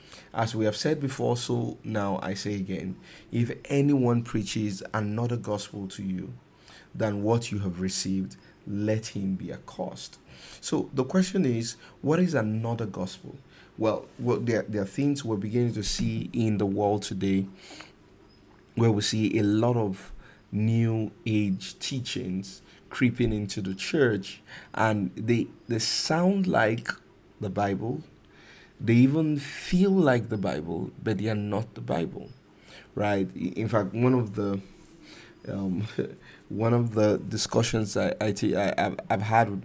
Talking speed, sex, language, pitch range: 145 wpm, male, English, 100-120 Hz